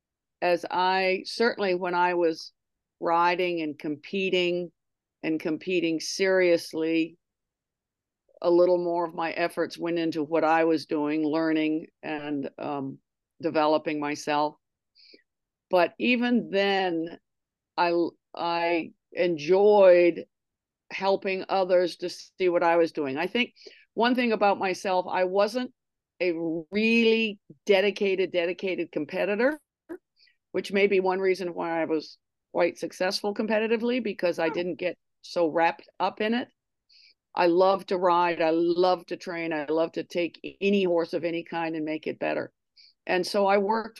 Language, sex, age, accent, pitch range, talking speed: English, female, 50-69, American, 165-190 Hz, 140 wpm